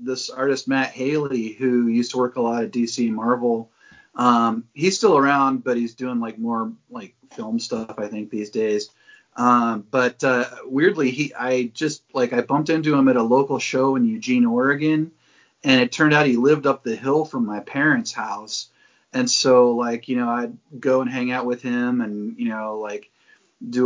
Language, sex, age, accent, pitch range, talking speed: English, male, 30-49, American, 115-140 Hz, 200 wpm